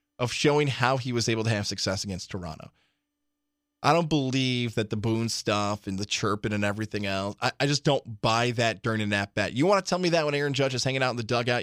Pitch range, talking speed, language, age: 120-175 Hz, 250 wpm, English, 20-39